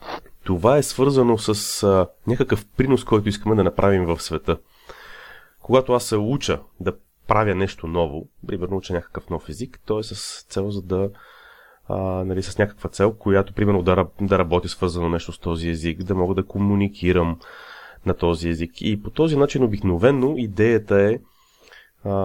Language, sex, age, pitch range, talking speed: Bulgarian, male, 30-49, 85-105 Hz, 165 wpm